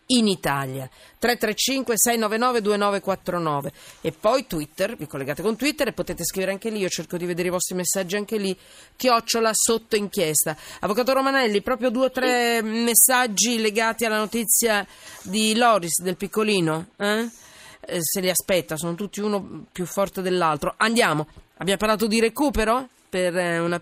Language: Italian